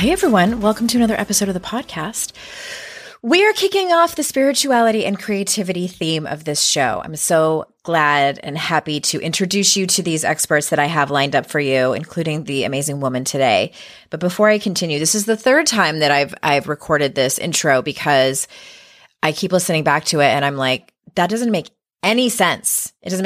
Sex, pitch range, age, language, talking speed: female, 155-220 Hz, 30-49, English, 195 wpm